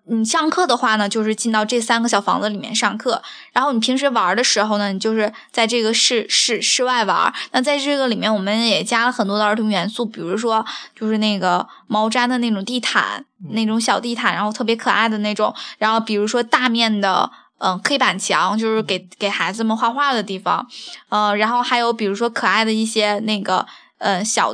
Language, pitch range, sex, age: Chinese, 210-250 Hz, female, 10-29